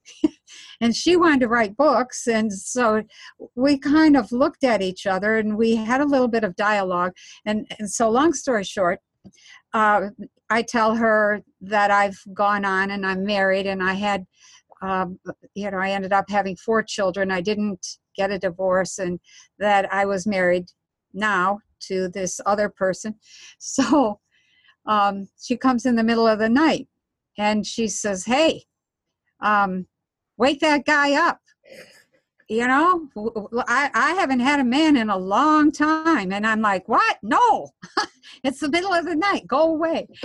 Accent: American